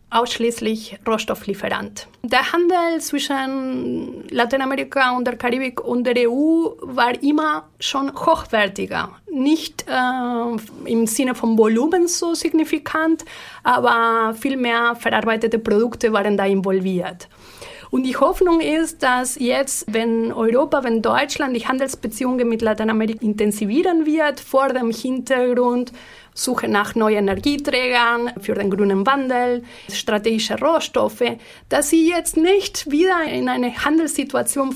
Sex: female